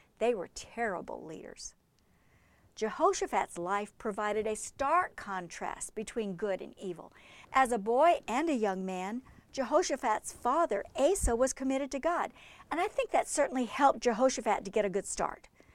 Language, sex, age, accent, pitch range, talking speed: English, female, 50-69, American, 210-290 Hz, 150 wpm